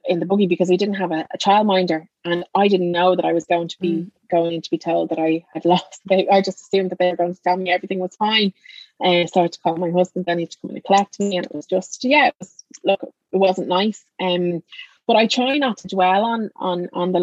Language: English